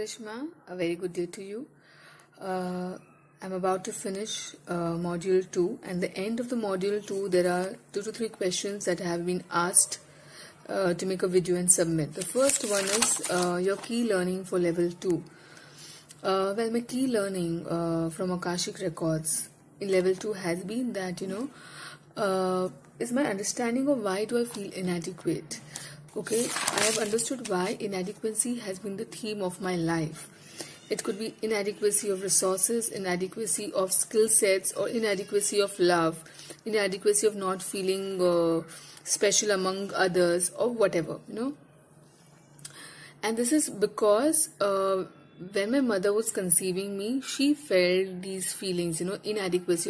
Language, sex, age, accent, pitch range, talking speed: English, female, 30-49, Indian, 180-215 Hz, 160 wpm